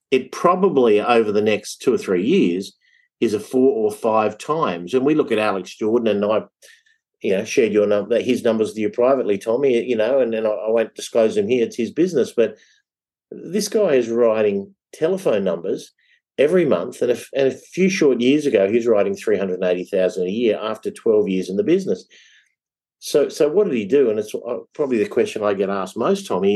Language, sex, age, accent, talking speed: English, male, 50-69, Australian, 215 wpm